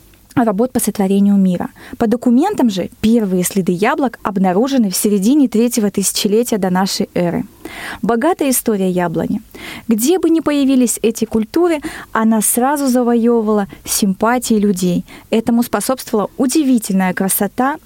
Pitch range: 200-255 Hz